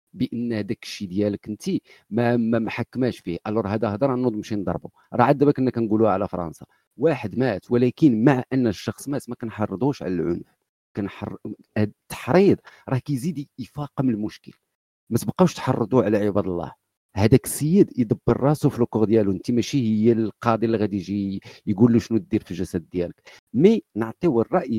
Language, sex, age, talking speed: Arabic, male, 50-69, 165 wpm